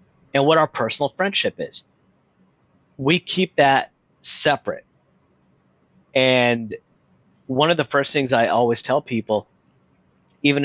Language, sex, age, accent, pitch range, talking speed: English, male, 30-49, American, 105-135 Hz, 120 wpm